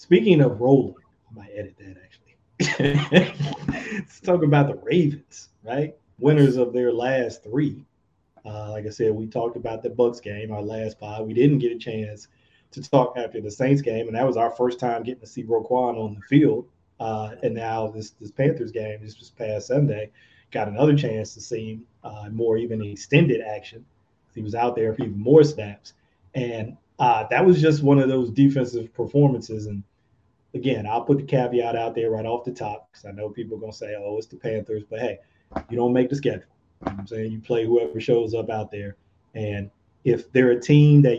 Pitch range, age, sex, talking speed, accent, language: 110-140 Hz, 30-49, male, 205 wpm, American, English